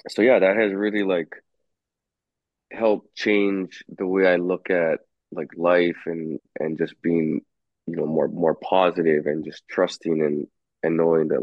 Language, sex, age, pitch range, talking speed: English, male, 20-39, 80-95 Hz, 170 wpm